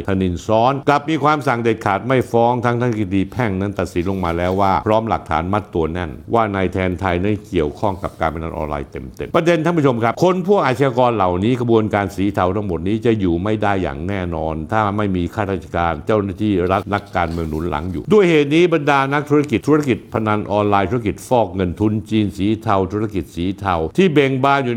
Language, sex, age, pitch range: Thai, male, 60-79, 90-115 Hz